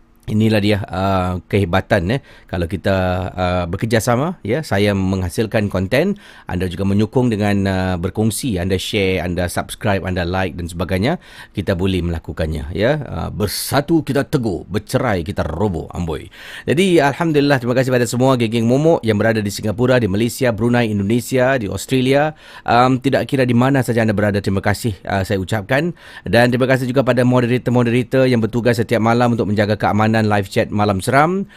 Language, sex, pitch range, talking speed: Malay, male, 95-120 Hz, 165 wpm